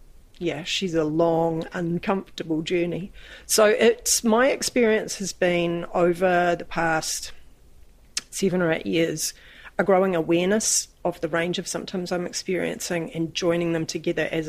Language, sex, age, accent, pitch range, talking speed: English, female, 40-59, Australian, 155-180 Hz, 140 wpm